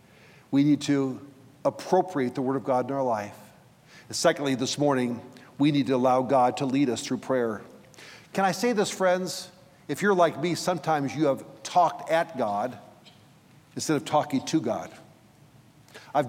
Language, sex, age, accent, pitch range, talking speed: English, male, 50-69, American, 130-175 Hz, 170 wpm